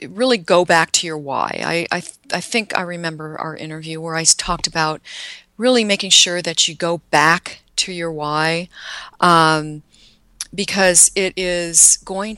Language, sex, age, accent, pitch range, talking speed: English, female, 40-59, American, 160-205 Hz, 165 wpm